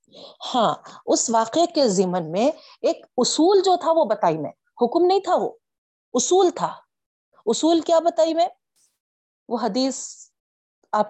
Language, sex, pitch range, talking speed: Urdu, female, 195-295 Hz, 140 wpm